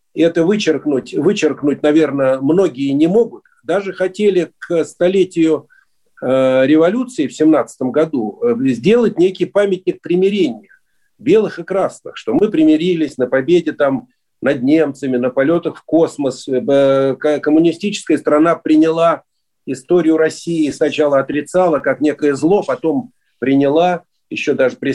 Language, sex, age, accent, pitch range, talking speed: Russian, male, 40-59, native, 145-205 Hz, 120 wpm